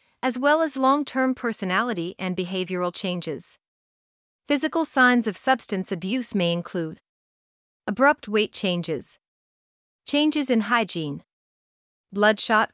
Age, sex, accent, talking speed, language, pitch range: 40-59, female, American, 105 wpm, English, 190-245 Hz